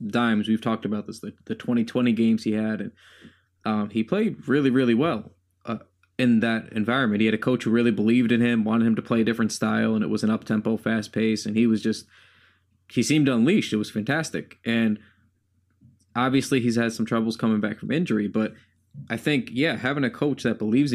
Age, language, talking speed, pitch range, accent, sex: 20-39, English, 210 wpm, 105-125 Hz, American, male